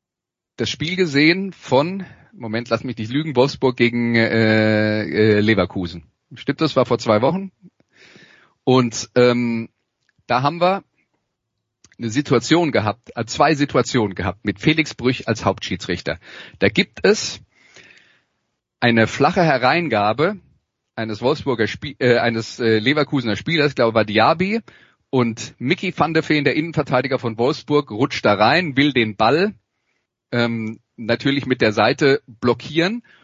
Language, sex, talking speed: German, male, 135 wpm